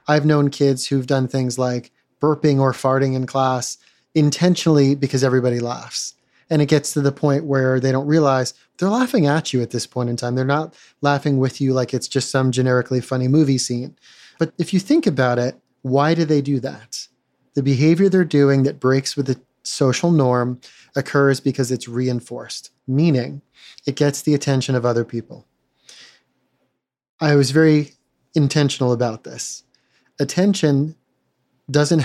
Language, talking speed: English, 165 wpm